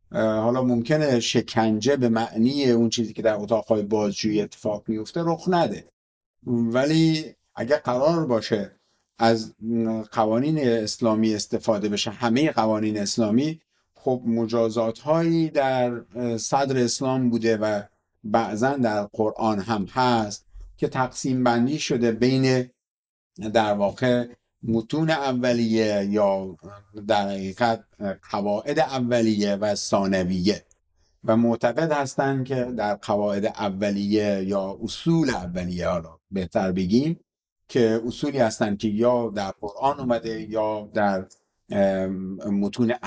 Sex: male